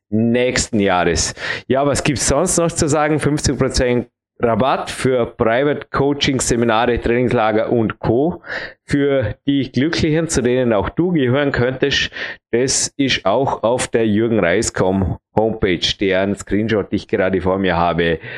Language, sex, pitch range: German, male, 110-145 Hz